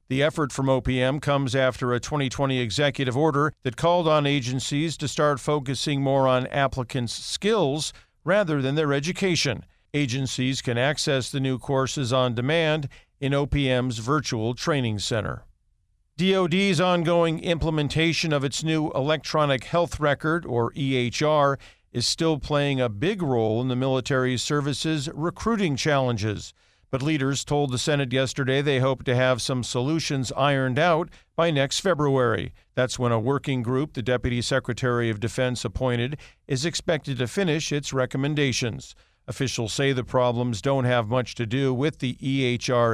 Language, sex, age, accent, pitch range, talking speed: English, male, 50-69, American, 125-155 Hz, 150 wpm